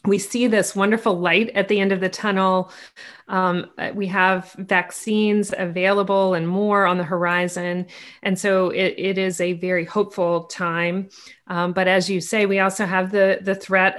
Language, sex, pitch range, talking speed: English, female, 175-200 Hz, 175 wpm